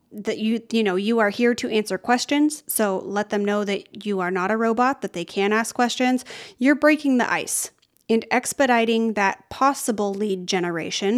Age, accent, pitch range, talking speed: 30-49, American, 205-255 Hz, 190 wpm